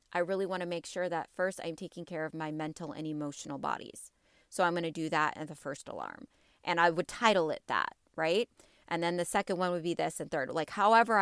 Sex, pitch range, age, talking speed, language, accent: female, 165-230 Hz, 30-49, 245 wpm, English, American